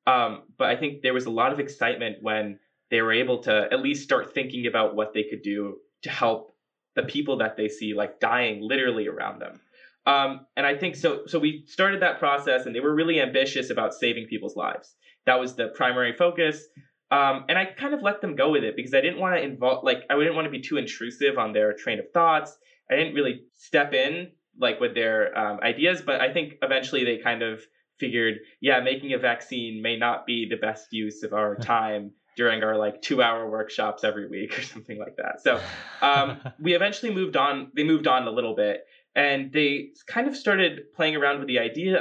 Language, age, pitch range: English, 20-39, 120-170 Hz